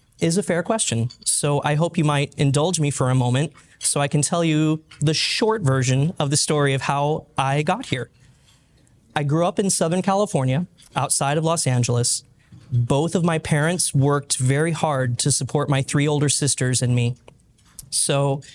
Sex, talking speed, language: male, 180 wpm, English